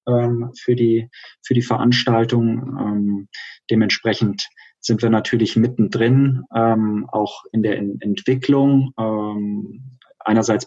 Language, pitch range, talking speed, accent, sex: German, 95-115 Hz, 85 wpm, German, male